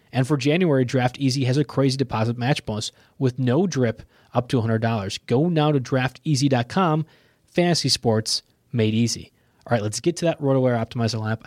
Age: 20-39